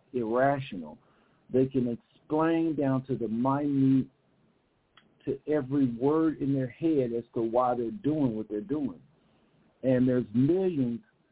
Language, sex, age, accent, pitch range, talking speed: English, male, 50-69, American, 120-140 Hz, 135 wpm